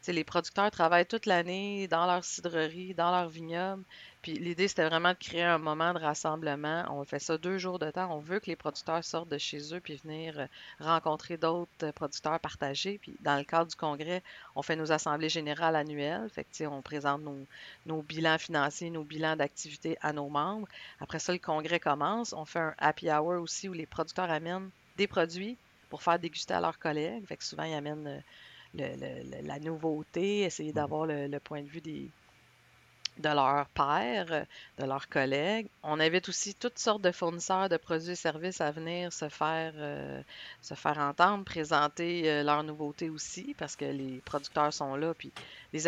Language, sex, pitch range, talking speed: French, female, 145-170 Hz, 195 wpm